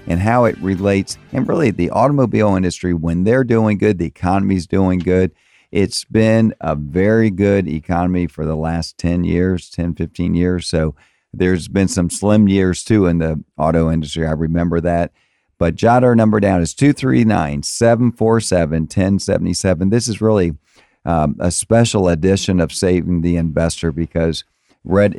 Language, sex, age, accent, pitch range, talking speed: English, male, 50-69, American, 80-95 Hz, 155 wpm